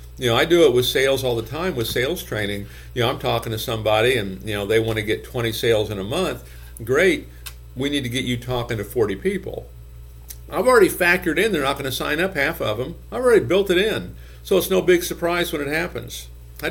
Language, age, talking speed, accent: English, 50-69, 245 wpm, American